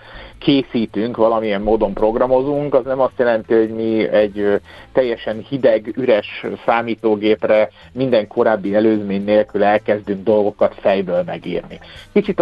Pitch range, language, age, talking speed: 110-135 Hz, Hungarian, 50-69, 115 wpm